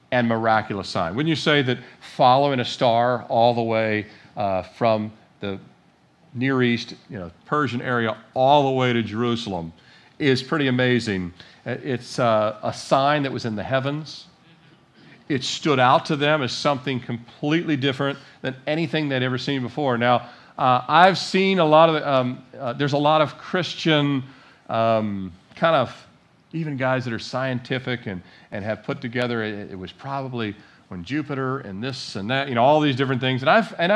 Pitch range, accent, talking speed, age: 120-150 Hz, American, 175 wpm, 40-59